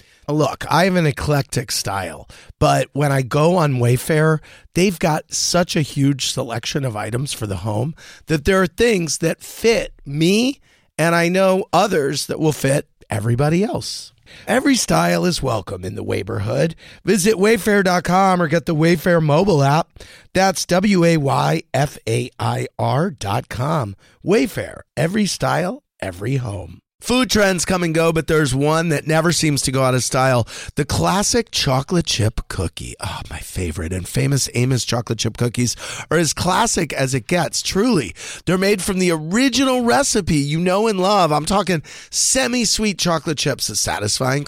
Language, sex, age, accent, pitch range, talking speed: English, male, 40-59, American, 125-180 Hz, 155 wpm